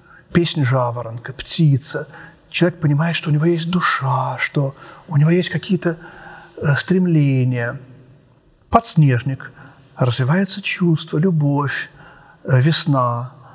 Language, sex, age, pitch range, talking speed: Russian, male, 40-59, 135-170 Hz, 95 wpm